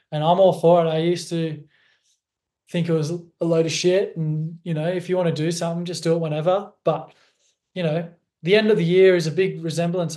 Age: 20-39